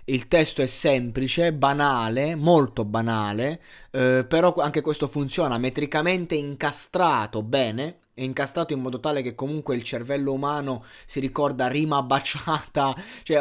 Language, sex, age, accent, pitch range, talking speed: Italian, male, 20-39, native, 115-145 Hz, 130 wpm